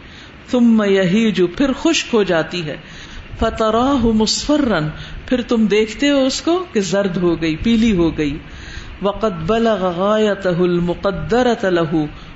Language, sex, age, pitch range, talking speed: Urdu, female, 50-69, 185-235 Hz, 130 wpm